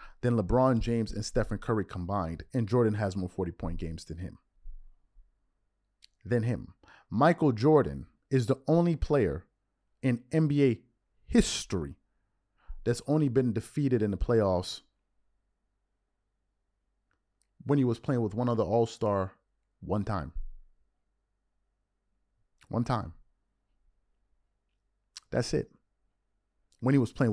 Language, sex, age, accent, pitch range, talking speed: English, male, 30-49, American, 95-125 Hz, 110 wpm